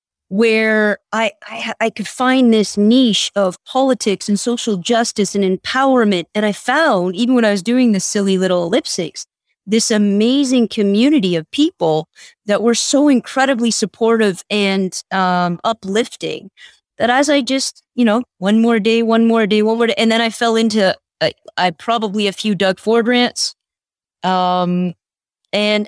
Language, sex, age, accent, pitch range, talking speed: English, female, 30-49, American, 195-235 Hz, 160 wpm